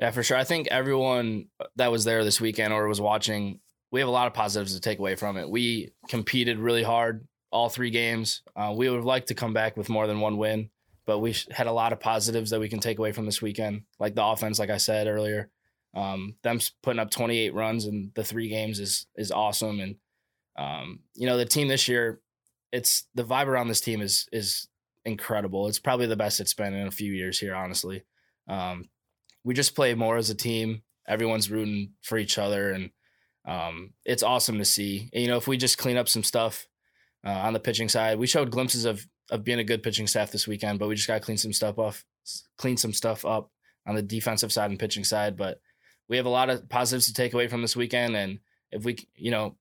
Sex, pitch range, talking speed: male, 105-120 Hz, 230 wpm